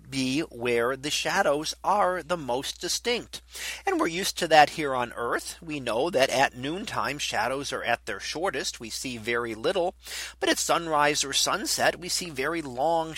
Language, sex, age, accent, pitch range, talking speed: English, male, 40-59, American, 135-175 Hz, 180 wpm